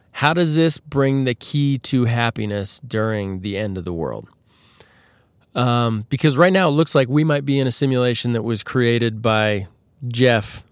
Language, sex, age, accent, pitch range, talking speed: English, male, 20-39, American, 110-145 Hz, 180 wpm